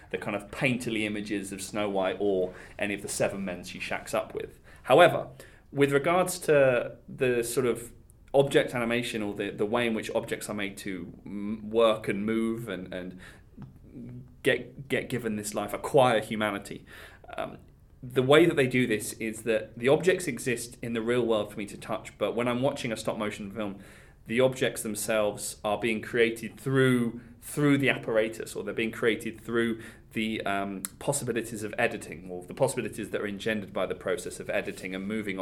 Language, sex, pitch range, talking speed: English, male, 100-125 Hz, 185 wpm